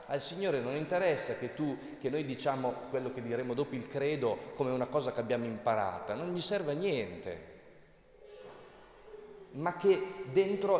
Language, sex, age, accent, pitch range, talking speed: Italian, male, 30-49, native, 125-195 Hz, 160 wpm